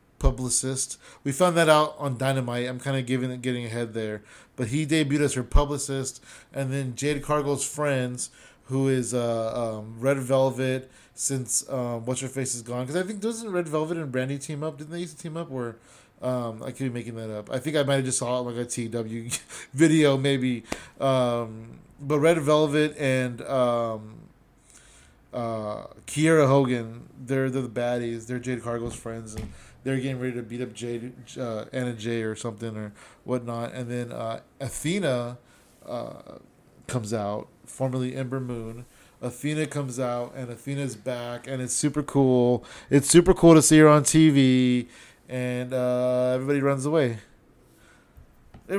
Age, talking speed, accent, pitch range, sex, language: 20-39, 170 wpm, American, 120-145 Hz, male, English